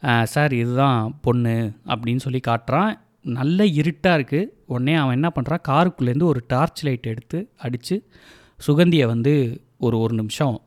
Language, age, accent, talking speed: Tamil, 30-49, native, 135 wpm